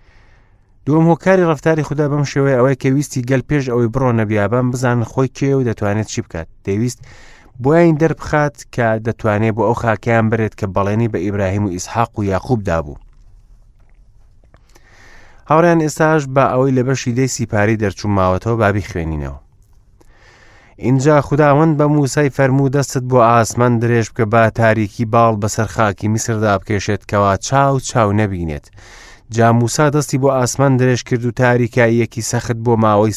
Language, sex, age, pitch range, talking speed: English, male, 30-49, 105-135 Hz, 155 wpm